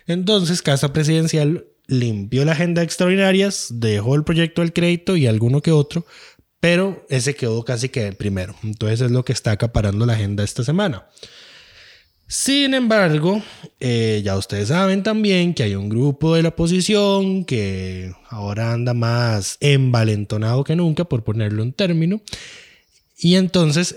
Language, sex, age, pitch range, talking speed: Spanish, male, 20-39, 110-165 Hz, 155 wpm